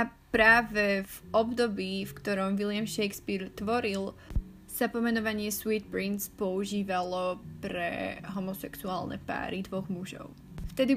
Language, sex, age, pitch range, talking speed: Slovak, female, 20-39, 185-225 Hz, 105 wpm